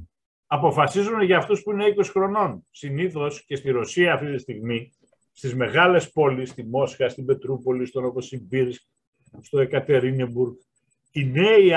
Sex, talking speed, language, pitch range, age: male, 145 wpm, Greek, 125-165 Hz, 50-69